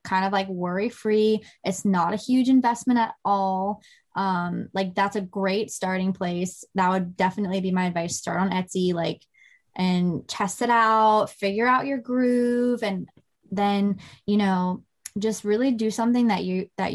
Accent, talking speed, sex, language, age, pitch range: American, 165 wpm, female, English, 10-29, 195-255 Hz